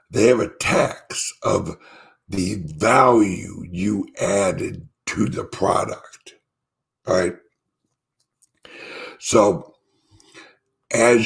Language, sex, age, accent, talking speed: English, male, 60-79, American, 80 wpm